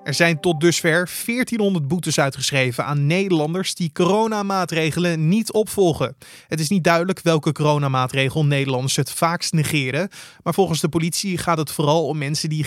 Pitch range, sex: 140-175 Hz, male